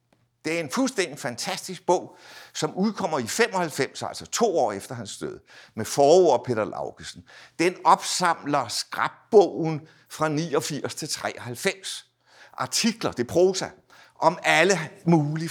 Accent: native